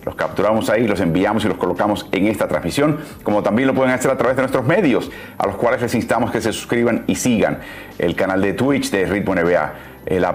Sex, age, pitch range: male, 40-59, 95-130 Hz